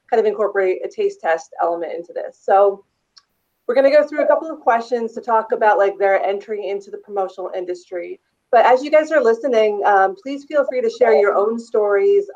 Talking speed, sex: 210 wpm, female